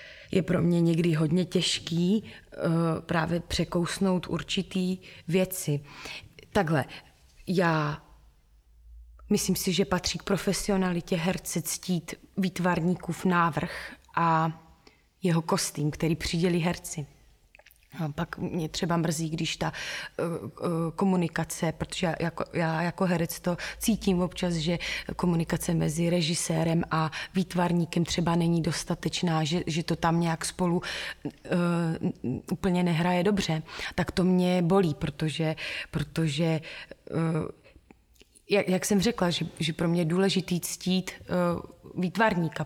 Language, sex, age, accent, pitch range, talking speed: Czech, female, 20-39, native, 160-185 Hz, 110 wpm